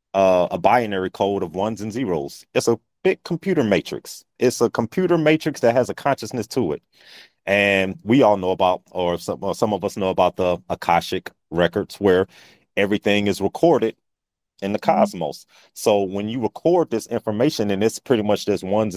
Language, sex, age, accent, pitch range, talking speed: English, male, 30-49, American, 100-120 Hz, 180 wpm